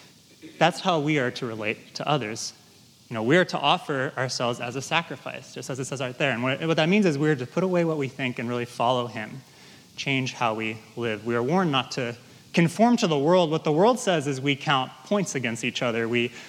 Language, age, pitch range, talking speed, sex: English, 20-39, 130-170 Hz, 245 wpm, male